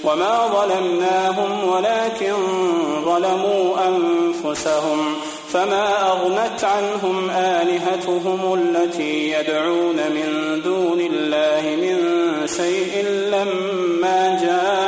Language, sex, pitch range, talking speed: Arabic, male, 175-205 Hz, 75 wpm